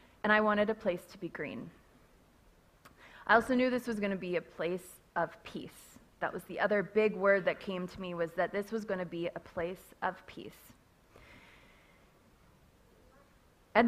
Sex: female